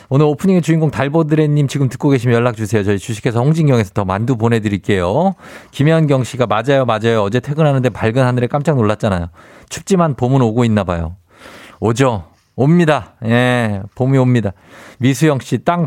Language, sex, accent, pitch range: Korean, male, native, 110-160 Hz